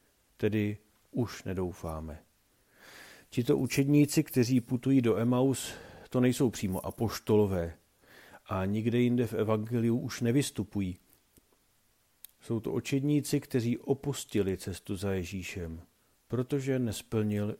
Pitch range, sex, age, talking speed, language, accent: 105-130 Hz, male, 50-69, 100 wpm, Czech, native